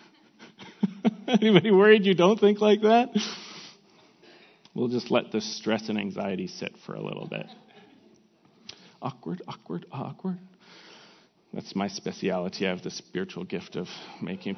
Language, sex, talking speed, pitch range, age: English, male, 130 wpm, 135-195 Hz, 40-59